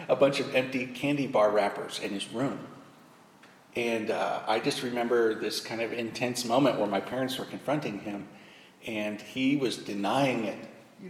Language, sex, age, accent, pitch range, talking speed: English, male, 40-59, American, 105-130 Hz, 175 wpm